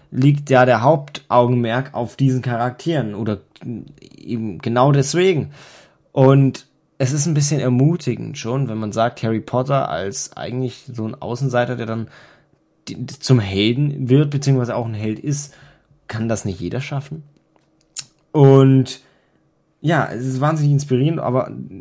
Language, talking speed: German, 140 wpm